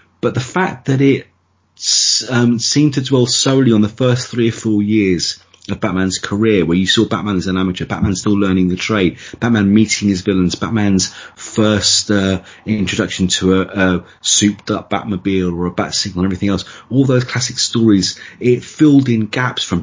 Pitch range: 95-125 Hz